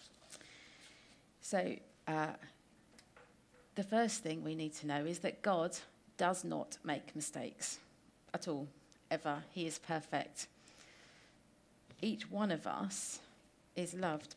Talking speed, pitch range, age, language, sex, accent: 115 wpm, 155-185 Hz, 40-59, English, female, British